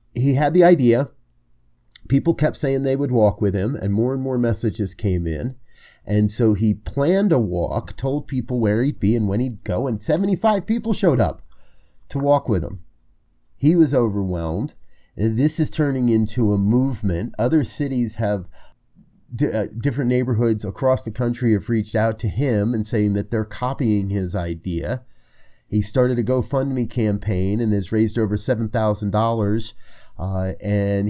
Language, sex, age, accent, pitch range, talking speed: English, male, 30-49, American, 100-125 Hz, 160 wpm